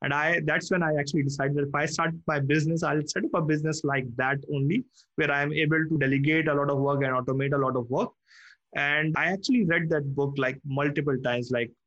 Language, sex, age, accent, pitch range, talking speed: English, male, 20-39, Indian, 135-165 Hz, 235 wpm